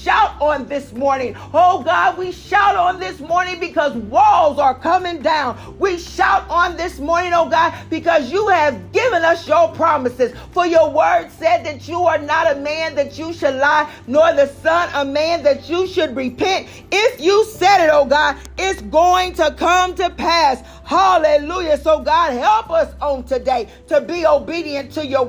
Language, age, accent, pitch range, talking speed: English, 40-59, American, 255-330 Hz, 185 wpm